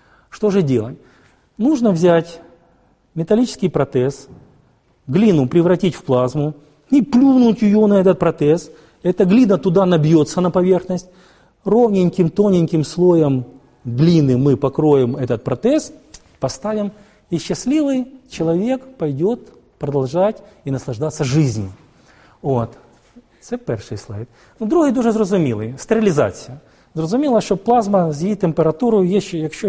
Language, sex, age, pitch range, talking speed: Russian, male, 40-59, 140-210 Hz, 110 wpm